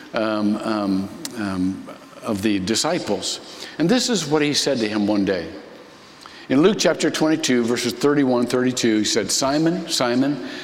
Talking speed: 150 wpm